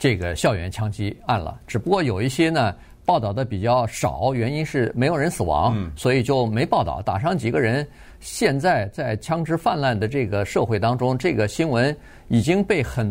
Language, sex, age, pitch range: Chinese, male, 50-69, 110-150 Hz